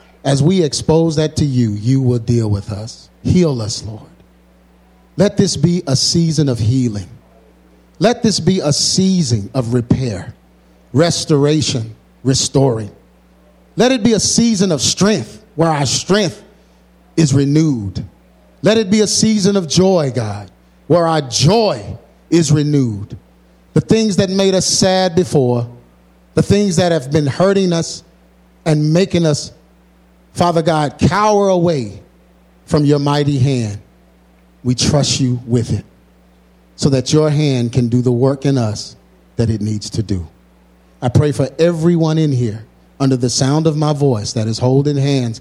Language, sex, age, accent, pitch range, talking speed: English, male, 50-69, American, 100-155 Hz, 155 wpm